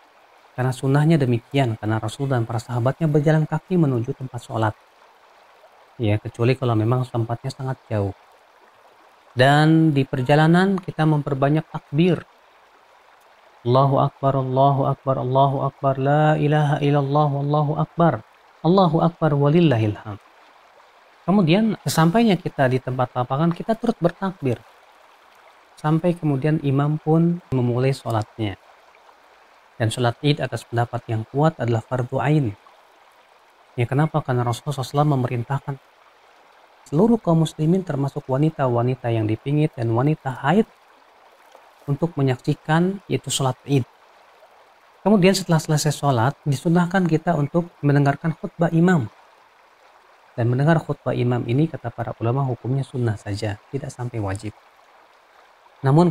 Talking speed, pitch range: 120 wpm, 125-155 Hz